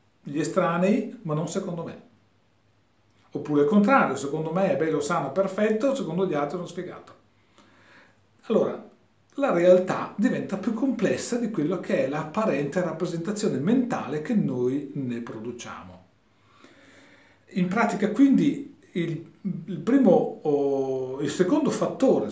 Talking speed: 120 wpm